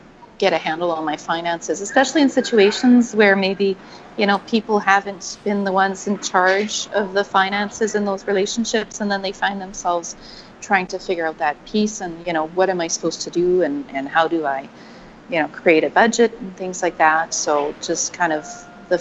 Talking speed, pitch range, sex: 205 wpm, 165-205 Hz, female